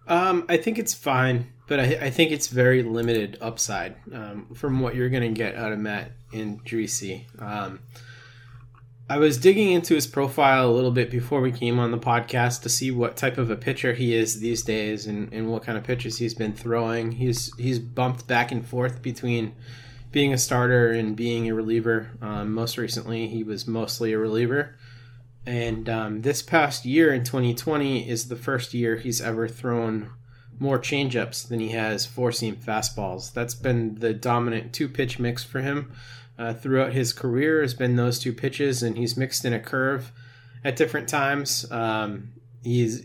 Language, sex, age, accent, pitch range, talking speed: English, male, 20-39, American, 115-130 Hz, 185 wpm